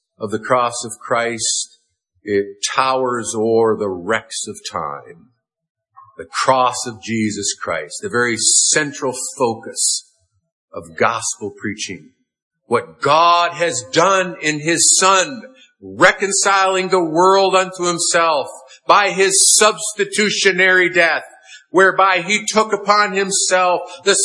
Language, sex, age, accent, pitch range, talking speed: English, male, 50-69, American, 150-200 Hz, 115 wpm